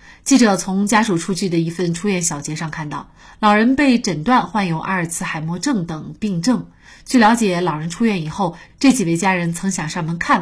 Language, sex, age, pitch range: Chinese, female, 30-49, 170-230 Hz